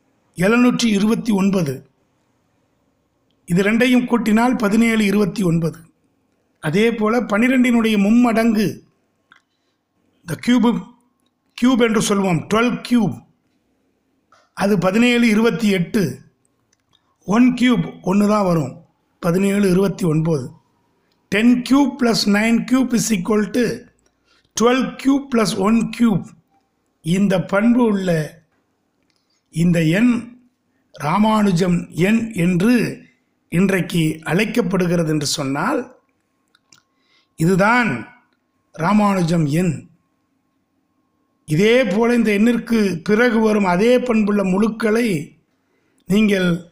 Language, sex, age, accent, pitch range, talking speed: Tamil, male, 60-79, native, 185-240 Hz, 80 wpm